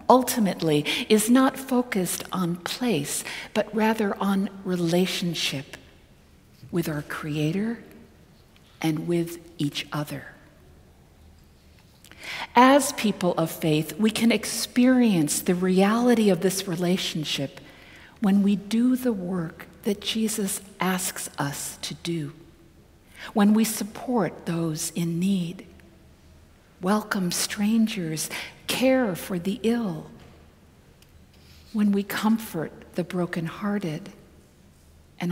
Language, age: English, 50-69